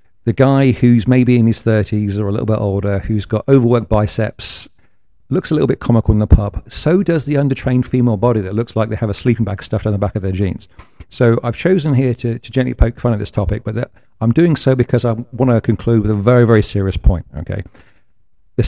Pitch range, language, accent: 100-120 Hz, English, British